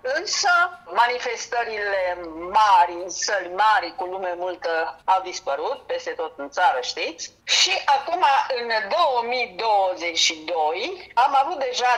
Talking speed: 110 wpm